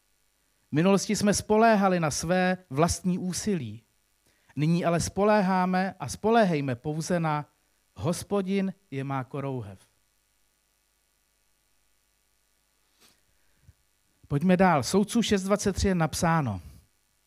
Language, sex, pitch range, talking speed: Czech, male, 130-185 Hz, 85 wpm